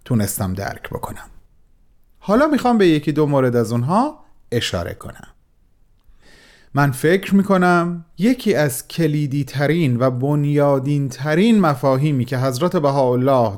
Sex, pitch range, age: male, 120-170 Hz, 40-59